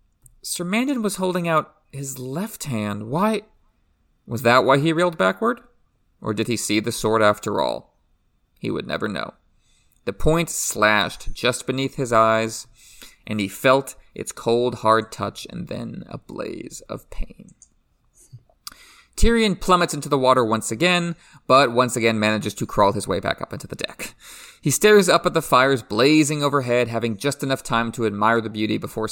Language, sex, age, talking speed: English, male, 30-49, 175 wpm